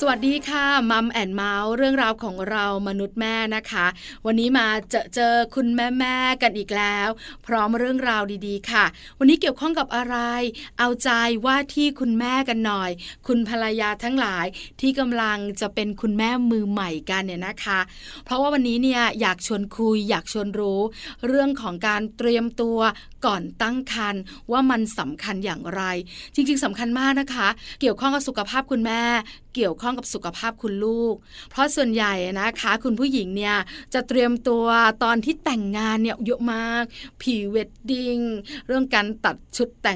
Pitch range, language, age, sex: 210-245 Hz, Thai, 20-39, female